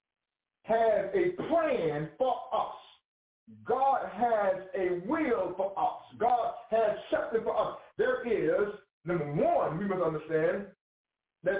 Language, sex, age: English, male, 50-69